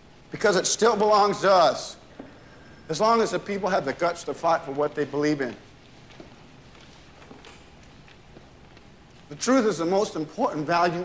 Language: English